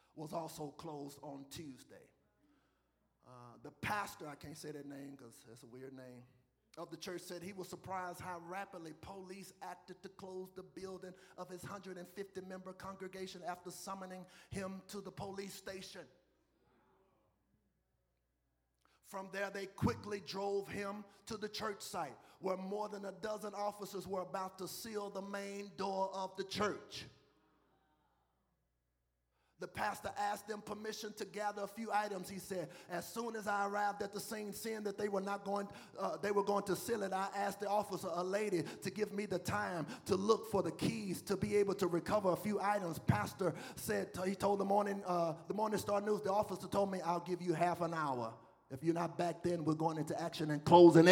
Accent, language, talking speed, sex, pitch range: American, English, 190 wpm, male, 170-200 Hz